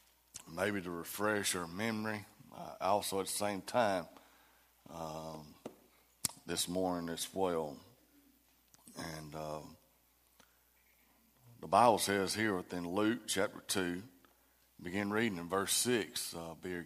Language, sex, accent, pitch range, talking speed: English, male, American, 85-110 Hz, 115 wpm